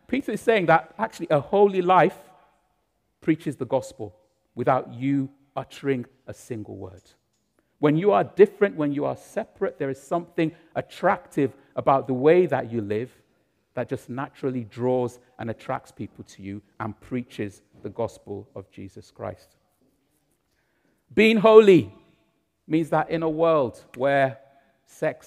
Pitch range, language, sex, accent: 115-160 Hz, English, male, British